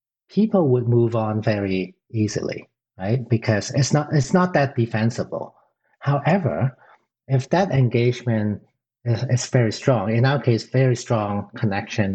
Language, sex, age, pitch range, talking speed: English, male, 50-69, 105-130 Hz, 140 wpm